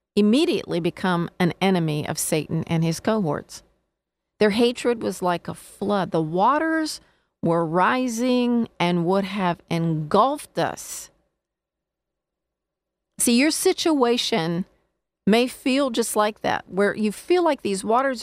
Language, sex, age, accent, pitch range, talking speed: English, female, 40-59, American, 185-240 Hz, 125 wpm